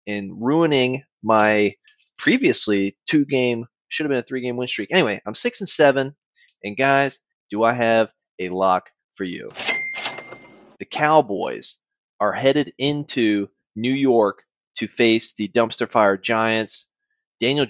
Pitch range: 105-135 Hz